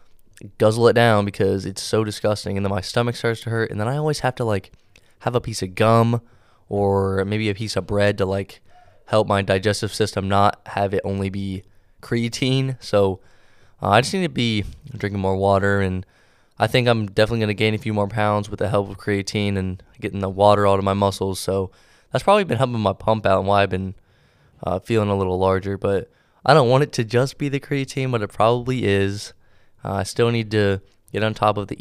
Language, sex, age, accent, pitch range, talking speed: English, male, 20-39, American, 100-115 Hz, 225 wpm